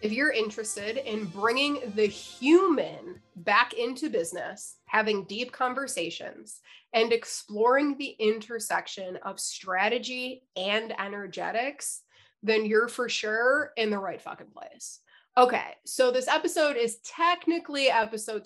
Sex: female